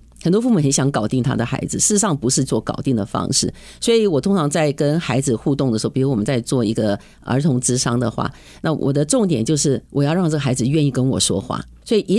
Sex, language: female, Chinese